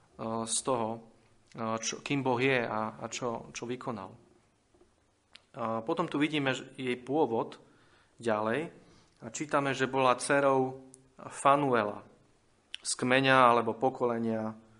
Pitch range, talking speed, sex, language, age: 115-130 Hz, 115 wpm, male, Slovak, 30-49